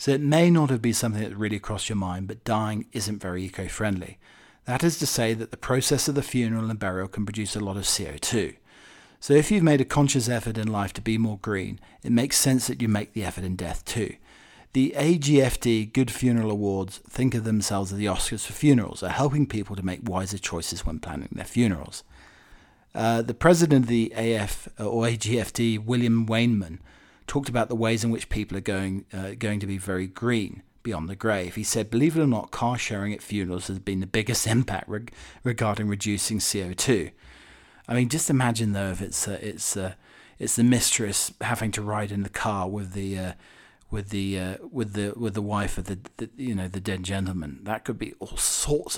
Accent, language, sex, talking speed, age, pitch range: British, English, male, 210 wpm, 40-59, 95-120 Hz